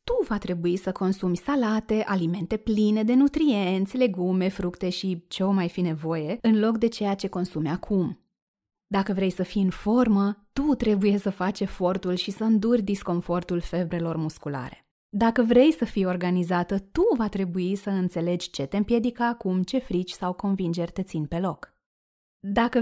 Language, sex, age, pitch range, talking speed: Romanian, female, 20-39, 180-220 Hz, 170 wpm